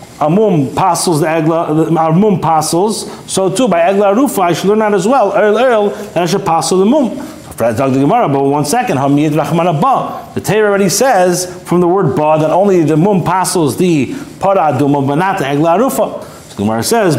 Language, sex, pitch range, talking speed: English, male, 150-195 Hz, 195 wpm